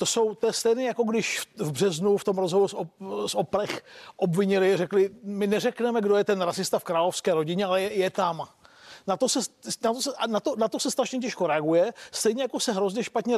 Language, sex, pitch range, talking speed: Czech, male, 175-220 Hz, 225 wpm